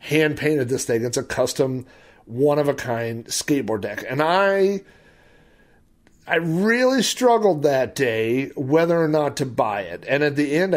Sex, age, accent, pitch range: male, 40-59, American, 120-155 Hz